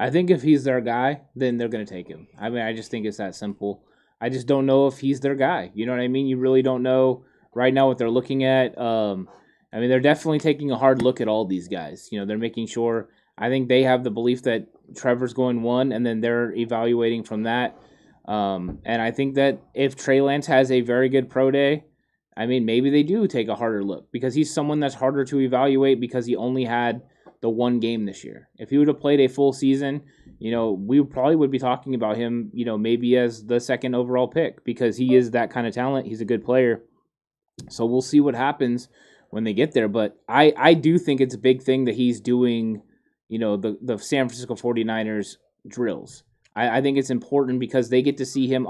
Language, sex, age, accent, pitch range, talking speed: English, male, 20-39, American, 115-130 Hz, 235 wpm